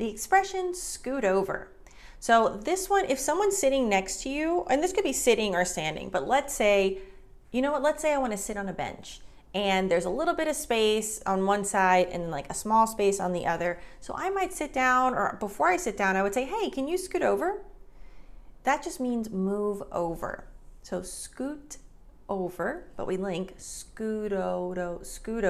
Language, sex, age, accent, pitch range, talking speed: English, female, 30-49, American, 195-300 Hz, 200 wpm